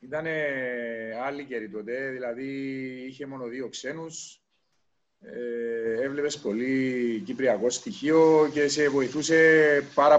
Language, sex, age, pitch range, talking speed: Greek, male, 40-59, 135-185 Hz, 95 wpm